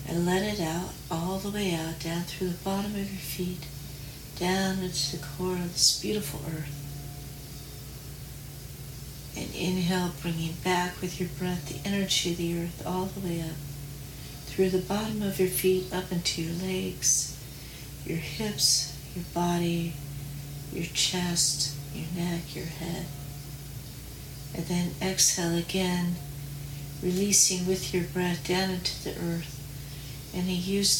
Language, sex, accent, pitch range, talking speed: English, female, American, 140-180 Hz, 140 wpm